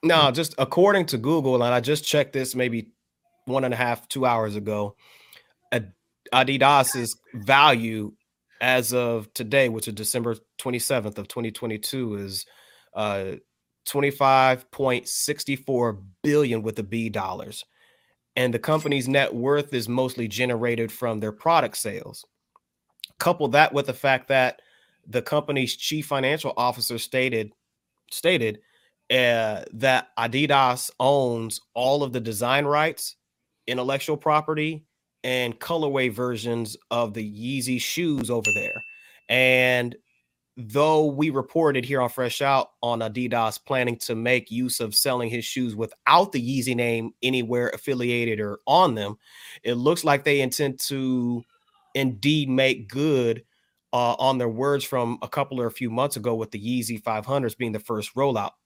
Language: English